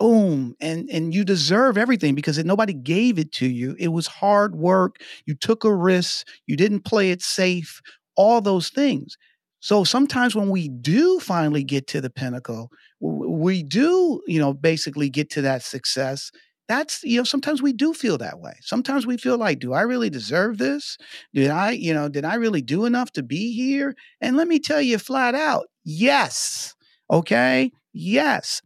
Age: 40-59